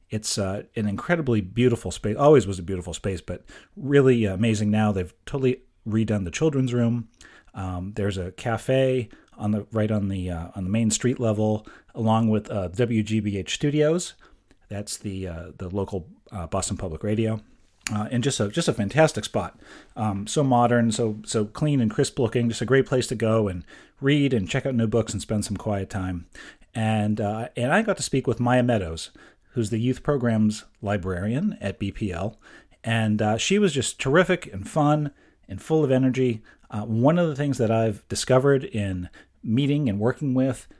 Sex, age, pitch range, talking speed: male, 40-59, 105-130 Hz, 185 wpm